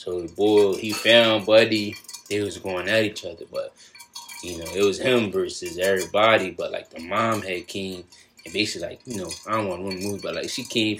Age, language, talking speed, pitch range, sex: 20-39, English, 220 wpm, 95-115 Hz, male